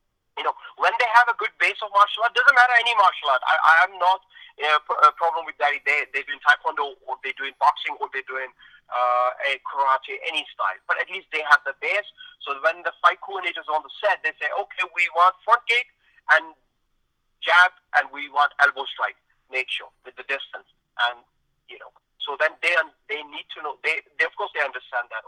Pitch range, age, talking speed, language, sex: 140-235 Hz, 30-49, 225 wpm, English, male